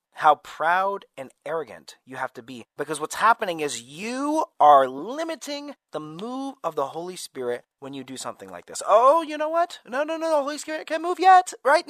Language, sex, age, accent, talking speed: English, male, 30-49, American, 205 wpm